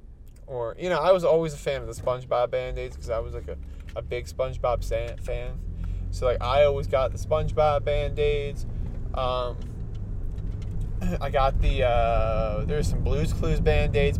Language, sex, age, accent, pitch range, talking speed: English, male, 20-39, American, 85-115 Hz, 165 wpm